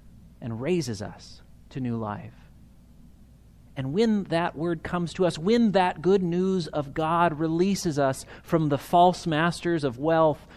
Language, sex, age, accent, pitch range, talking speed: English, male, 30-49, American, 130-185 Hz, 155 wpm